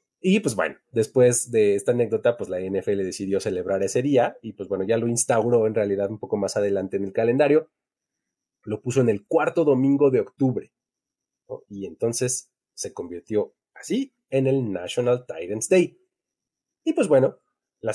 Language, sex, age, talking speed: Spanish, male, 30-49, 170 wpm